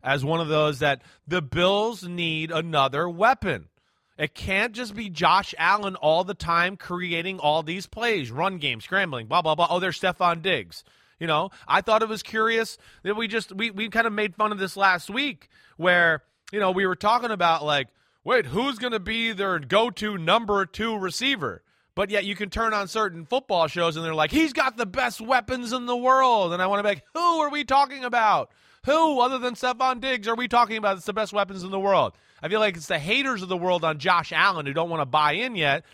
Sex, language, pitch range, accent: male, English, 170-225 Hz, American